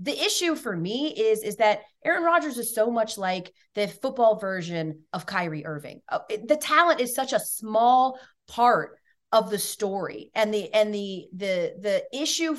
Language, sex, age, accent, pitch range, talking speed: English, female, 30-49, American, 175-260 Hz, 175 wpm